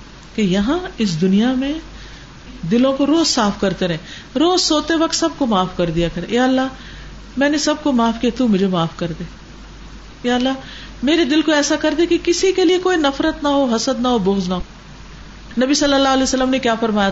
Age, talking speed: 50-69, 195 wpm